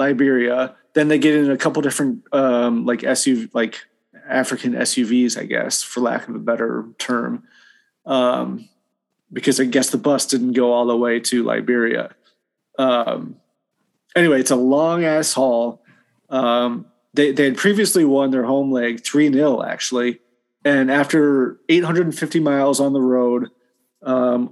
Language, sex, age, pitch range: English, male, 30-49, 125-150 Hz